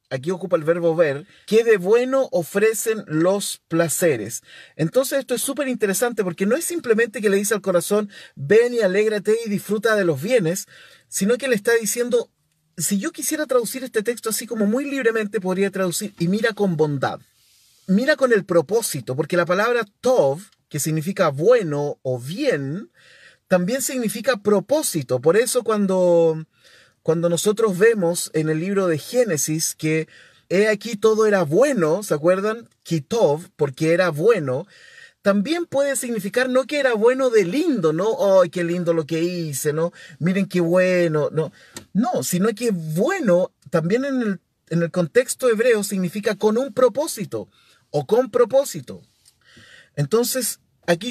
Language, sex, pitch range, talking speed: Spanish, male, 170-235 Hz, 160 wpm